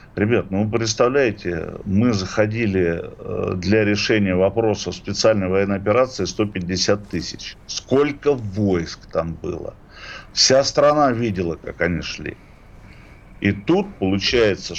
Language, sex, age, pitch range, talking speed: Russian, male, 50-69, 95-110 Hz, 110 wpm